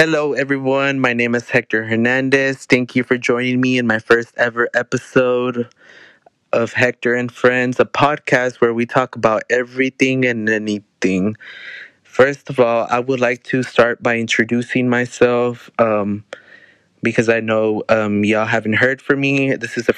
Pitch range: 110-125 Hz